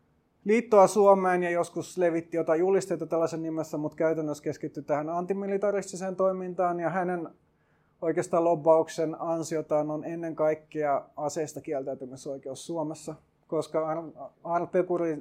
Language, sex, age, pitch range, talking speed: Finnish, male, 20-39, 150-180 Hz, 110 wpm